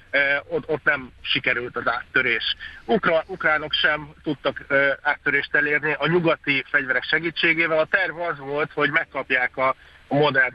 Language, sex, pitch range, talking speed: Hungarian, male, 130-160 Hz, 130 wpm